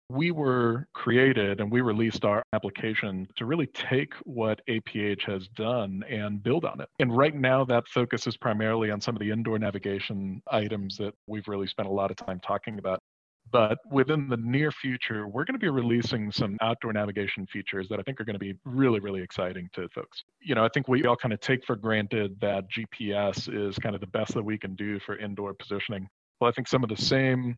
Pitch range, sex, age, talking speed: 100-125 Hz, male, 40-59, 220 wpm